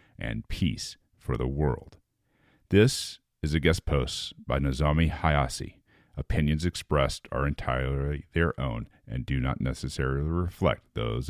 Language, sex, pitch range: English, male, 70-95 Hz